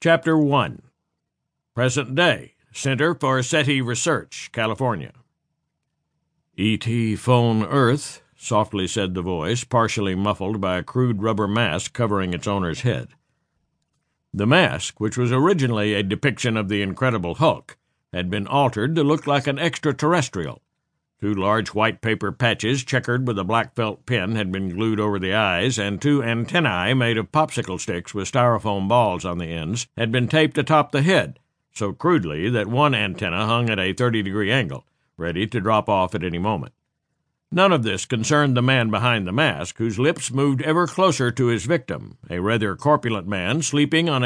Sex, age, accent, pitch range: male, 60-79, American, 105-140 Hz